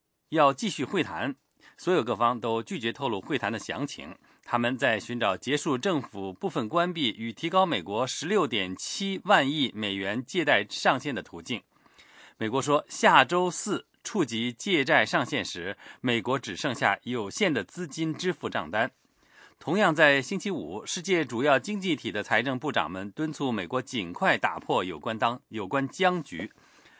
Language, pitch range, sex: English, 115-175 Hz, male